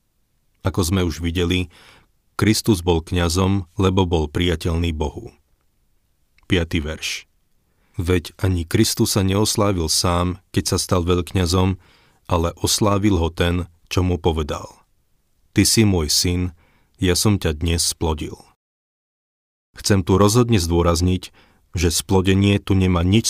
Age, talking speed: 40-59, 125 wpm